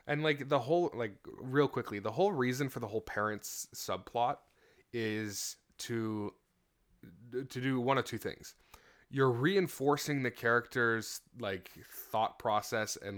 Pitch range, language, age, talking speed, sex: 100-125 Hz, English, 20-39, 140 wpm, male